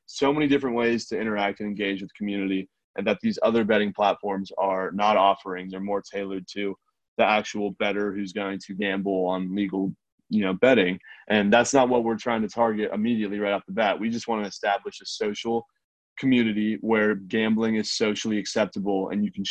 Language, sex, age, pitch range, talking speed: English, male, 20-39, 100-110 Hz, 195 wpm